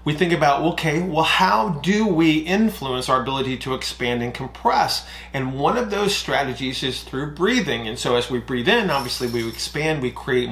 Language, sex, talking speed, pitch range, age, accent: English, male, 195 wpm, 125-165 Hz, 30-49, American